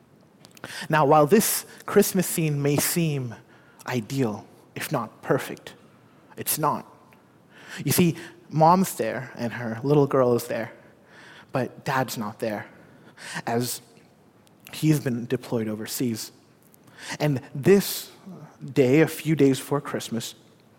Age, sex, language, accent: 30-49, male, English, American